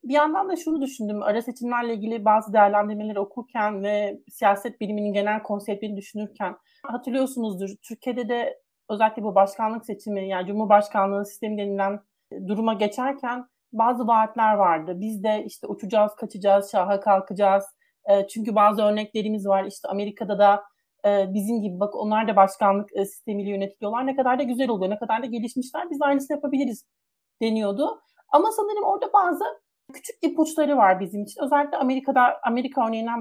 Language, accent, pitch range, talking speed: Turkish, native, 205-285 Hz, 145 wpm